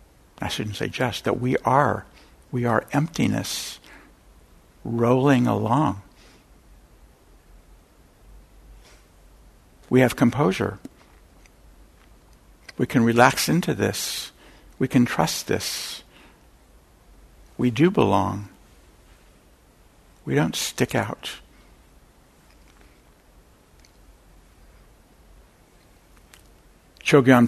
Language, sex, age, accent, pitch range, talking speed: English, male, 60-79, American, 75-120 Hz, 70 wpm